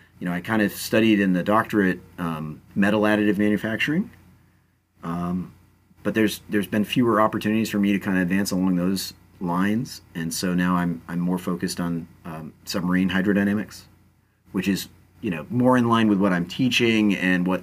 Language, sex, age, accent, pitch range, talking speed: English, male, 30-49, American, 85-105 Hz, 180 wpm